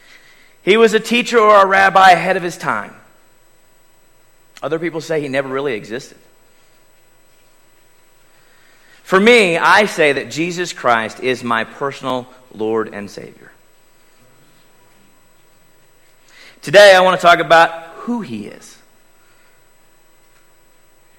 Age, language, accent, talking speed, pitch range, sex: 40-59, English, American, 115 wpm, 130-190 Hz, male